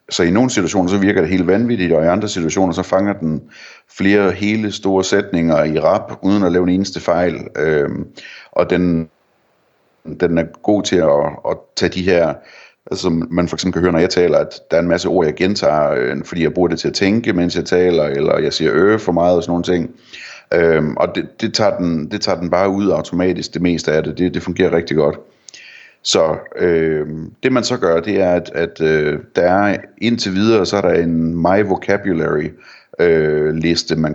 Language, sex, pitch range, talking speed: Danish, male, 80-95 Hz, 205 wpm